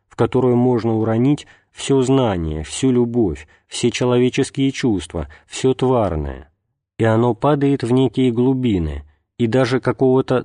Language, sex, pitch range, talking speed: Russian, male, 95-125 Hz, 125 wpm